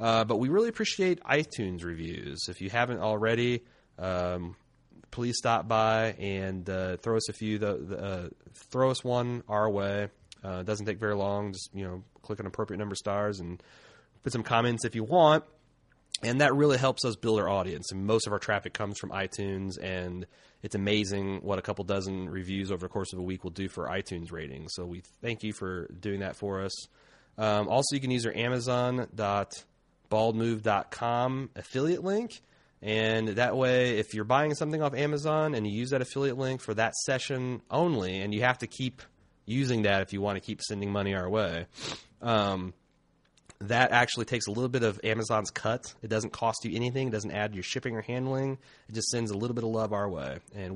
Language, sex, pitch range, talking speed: English, male, 95-120 Hz, 205 wpm